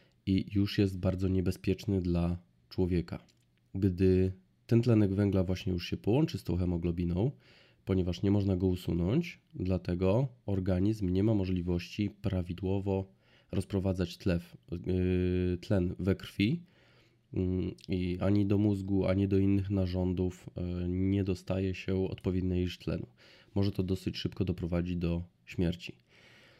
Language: Polish